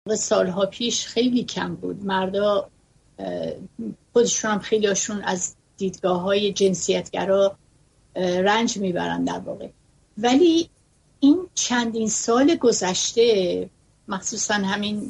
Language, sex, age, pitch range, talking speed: Persian, female, 60-79, 195-240 Hz, 90 wpm